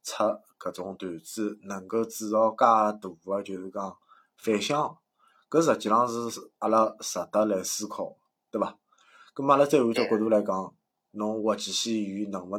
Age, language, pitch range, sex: 20-39, Chinese, 100-115 Hz, male